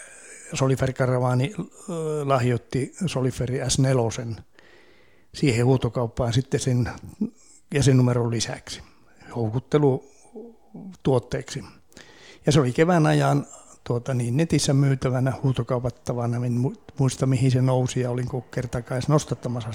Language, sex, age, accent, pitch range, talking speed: Finnish, male, 60-79, native, 125-145 Hz, 95 wpm